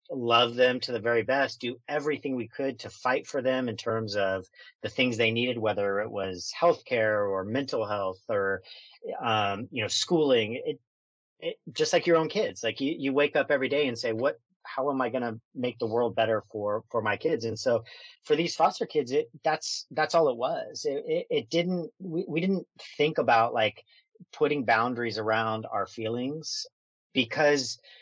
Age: 40-59